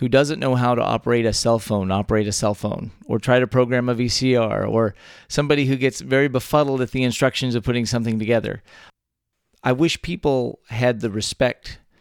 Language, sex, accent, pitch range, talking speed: English, male, American, 115-130 Hz, 190 wpm